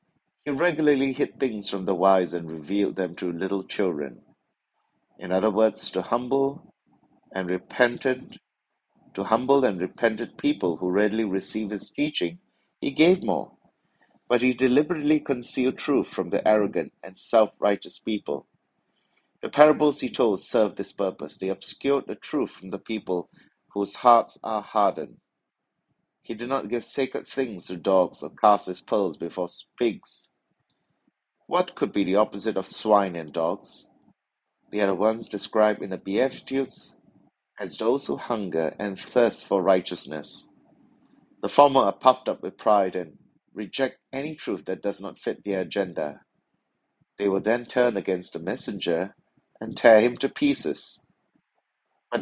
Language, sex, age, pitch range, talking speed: English, male, 60-79, 95-130 Hz, 150 wpm